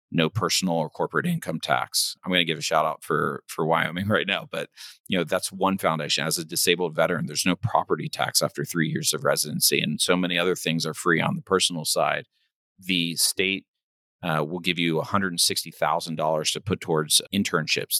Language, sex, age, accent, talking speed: English, male, 40-59, American, 195 wpm